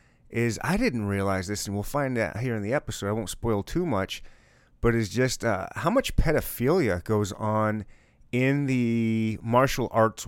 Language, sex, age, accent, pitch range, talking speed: English, male, 30-49, American, 100-125 Hz, 180 wpm